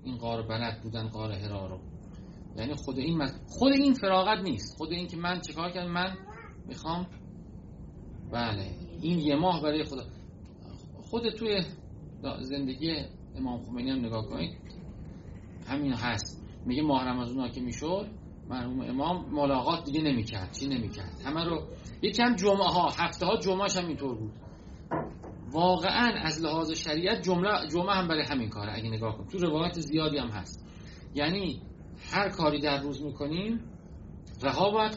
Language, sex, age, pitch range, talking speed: Persian, male, 30-49, 110-175 Hz, 155 wpm